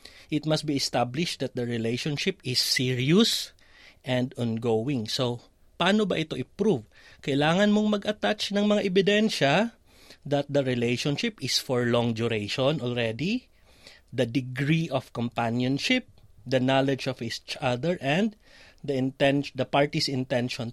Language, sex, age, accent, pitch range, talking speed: Filipino, male, 30-49, native, 120-150 Hz, 130 wpm